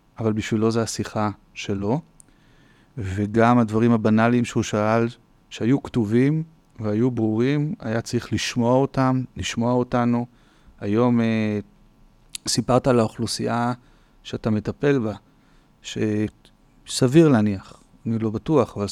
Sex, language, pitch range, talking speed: male, Hebrew, 105-125 Hz, 110 wpm